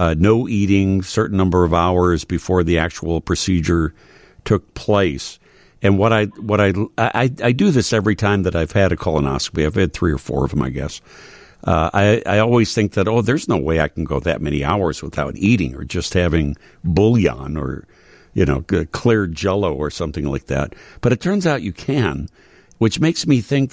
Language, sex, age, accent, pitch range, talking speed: English, male, 60-79, American, 85-110 Hz, 200 wpm